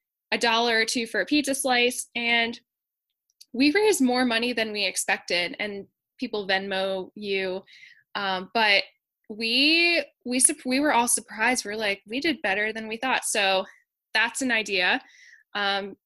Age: 10-29